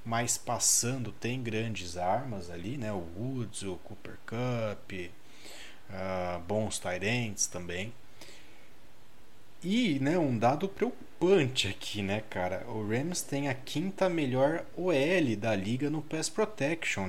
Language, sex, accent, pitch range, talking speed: Portuguese, male, Brazilian, 105-135 Hz, 125 wpm